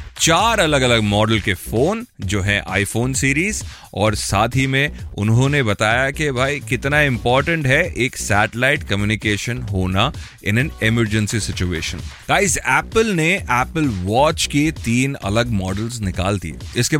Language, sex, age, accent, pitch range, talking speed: Hindi, male, 30-49, native, 110-145 Hz, 145 wpm